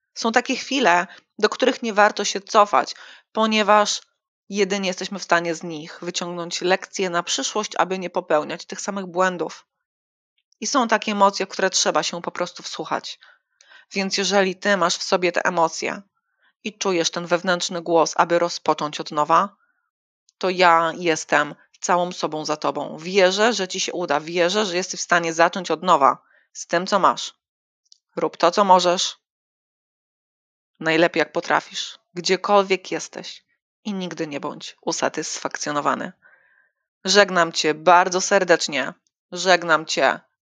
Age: 20-39